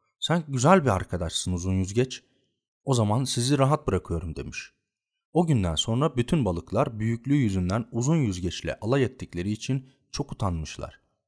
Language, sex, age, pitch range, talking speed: Turkish, male, 40-59, 95-135 Hz, 140 wpm